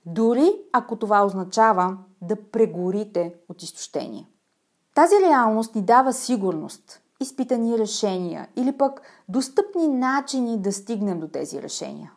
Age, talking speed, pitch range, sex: 30-49, 120 wpm, 185-265 Hz, female